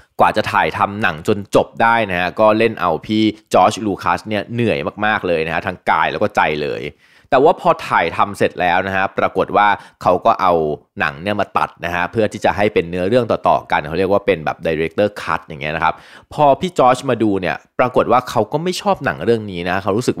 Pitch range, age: 90-115 Hz, 20-39